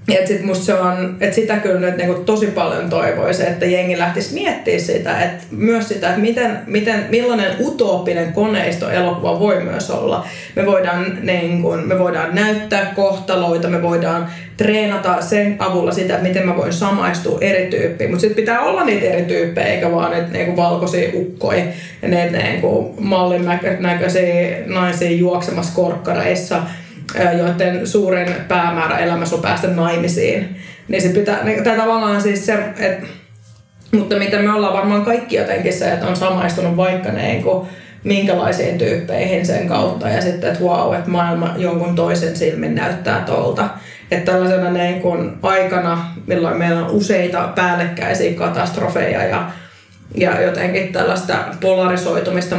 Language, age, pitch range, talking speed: Finnish, 20-39, 175-200 Hz, 130 wpm